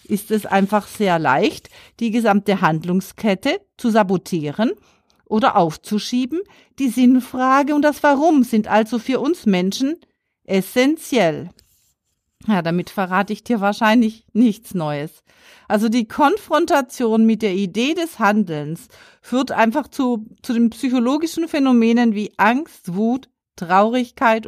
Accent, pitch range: German, 195-250 Hz